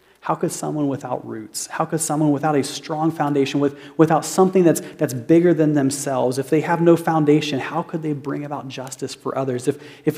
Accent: American